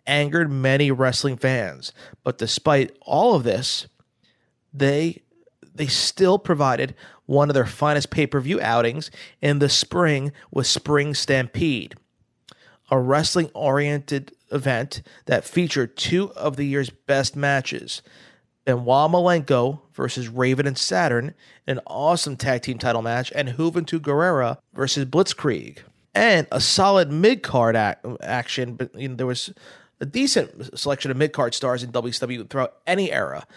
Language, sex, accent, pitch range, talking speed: English, male, American, 130-155 Hz, 135 wpm